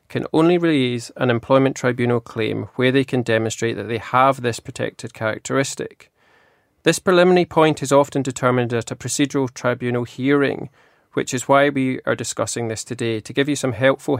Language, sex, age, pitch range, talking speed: English, male, 20-39, 115-140 Hz, 175 wpm